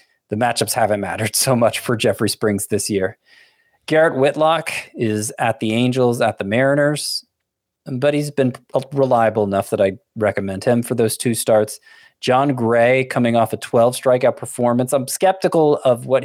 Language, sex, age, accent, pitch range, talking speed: English, male, 20-39, American, 105-130 Hz, 165 wpm